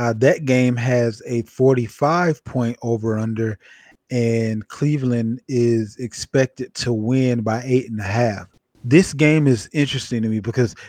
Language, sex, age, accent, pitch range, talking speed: English, male, 30-49, American, 115-135 Hz, 150 wpm